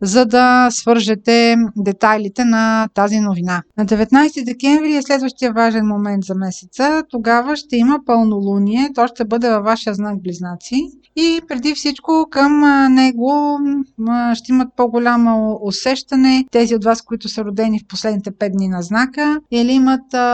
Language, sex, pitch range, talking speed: Bulgarian, female, 215-265 Hz, 150 wpm